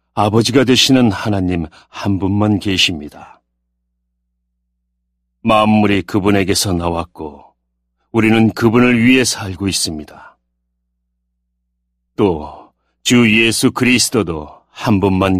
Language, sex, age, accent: Korean, male, 40-59, native